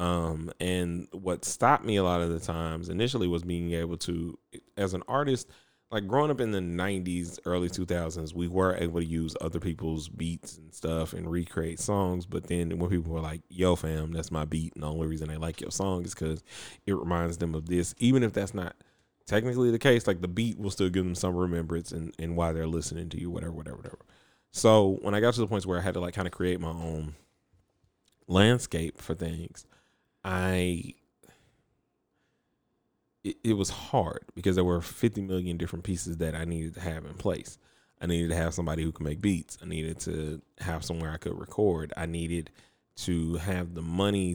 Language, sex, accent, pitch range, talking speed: English, male, American, 80-95 Hz, 210 wpm